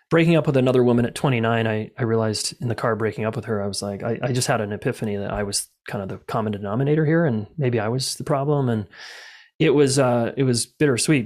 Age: 30-49